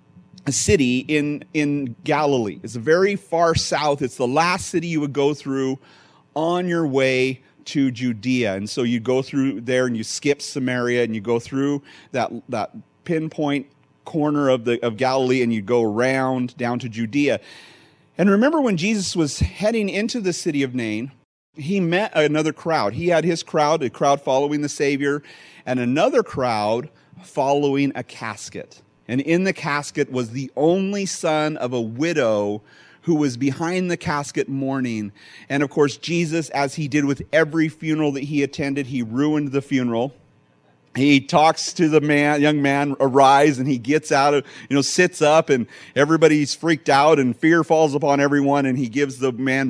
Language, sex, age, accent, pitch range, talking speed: English, male, 40-59, American, 125-155 Hz, 175 wpm